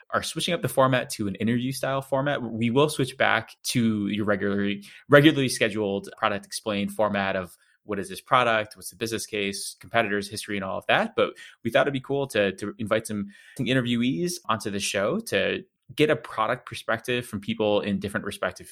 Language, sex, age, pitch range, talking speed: English, male, 20-39, 105-125 Hz, 195 wpm